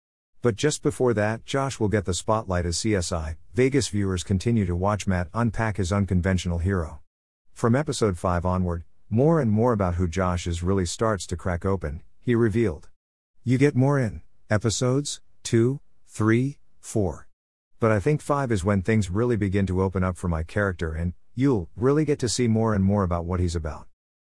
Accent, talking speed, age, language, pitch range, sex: American, 185 wpm, 50-69, English, 90-115 Hz, male